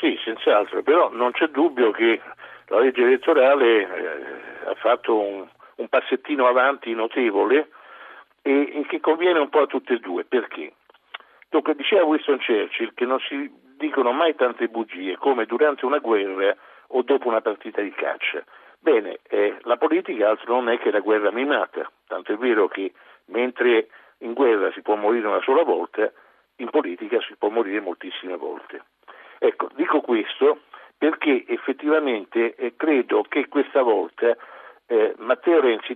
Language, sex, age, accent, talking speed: Italian, male, 60-79, native, 155 wpm